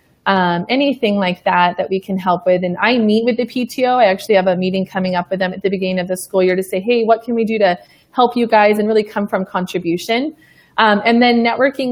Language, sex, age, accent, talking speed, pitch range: English, female, 30-49, American, 255 wpm, 190-225 Hz